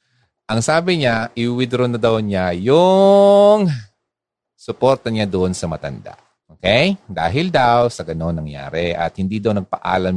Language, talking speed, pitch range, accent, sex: Filipino, 150 wpm, 95-155 Hz, native, male